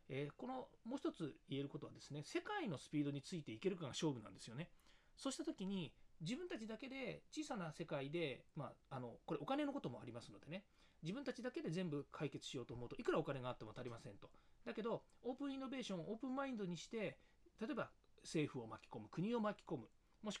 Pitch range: 145-235 Hz